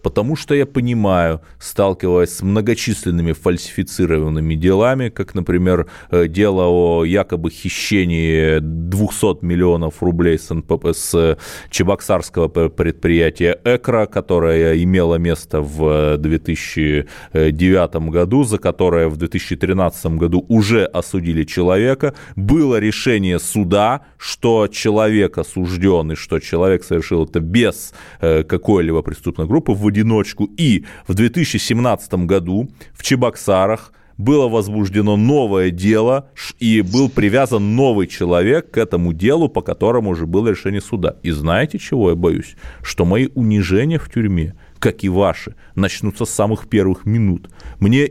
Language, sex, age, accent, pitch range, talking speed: Russian, male, 30-49, native, 85-110 Hz, 120 wpm